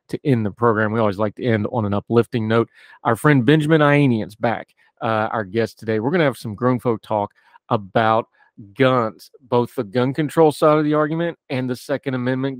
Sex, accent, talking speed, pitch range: male, American, 205 wpm, 110-130 Hz